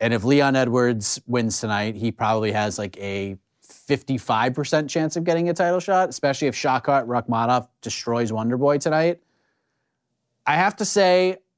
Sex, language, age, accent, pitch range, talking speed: male, English, 30-49, American, 115-140 Hz, 150 wpm